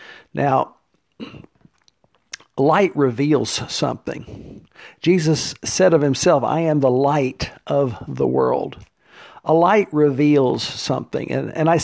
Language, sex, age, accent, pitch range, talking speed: English, male, 50-69, American, 130-155 Hz, 110 wpm